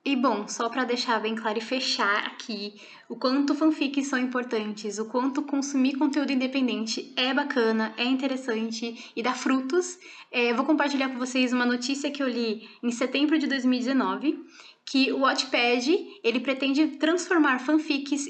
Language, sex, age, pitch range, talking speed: Portuguese, female, 10-29, 235-280 Hz, 155 wpm